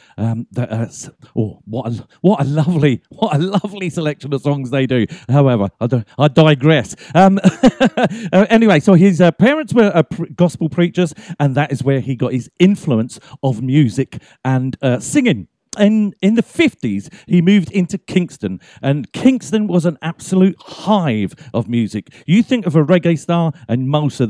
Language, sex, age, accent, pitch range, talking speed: English, male, 40-59, British, 125-170 Hz, 180 wpm